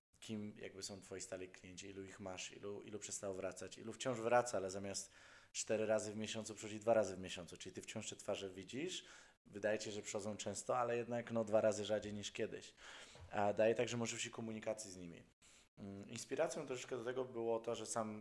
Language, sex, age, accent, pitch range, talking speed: Polish, male, 20-39, native, 100-115 Hz, 200 wpm